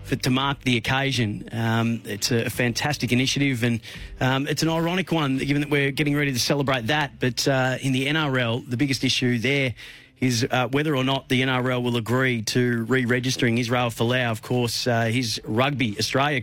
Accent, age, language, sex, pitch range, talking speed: Australian, 30-49, English, male, 115-130 Hz, 195 wpm